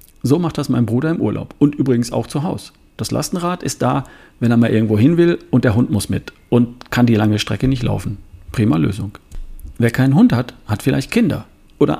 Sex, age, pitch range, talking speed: male, 40-59, 110-145 Hz, 220 wpm